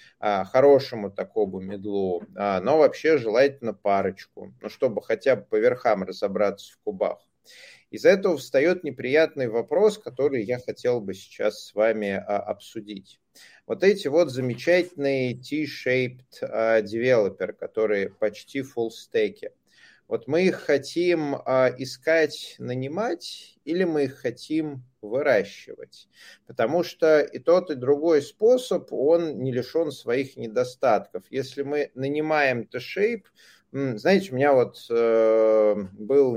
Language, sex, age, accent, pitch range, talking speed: Russian, male, 30-49, native, 110-190 Hz, 120 wpm